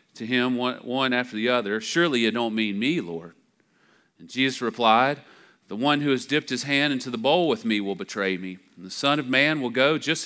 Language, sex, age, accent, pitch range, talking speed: English, male, 40-59, American, 105-135 Hz, 220 wpm